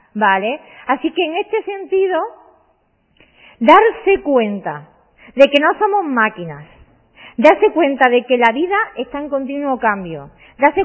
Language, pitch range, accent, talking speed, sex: Spanish, 230-300 Hz, Spanish, 135 wpm, female